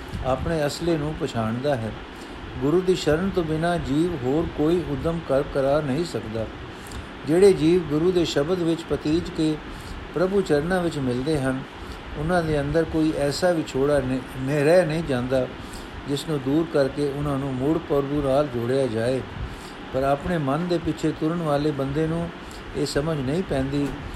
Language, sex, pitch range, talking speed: Punjabi, male, 135-170 Hz, 160 wpm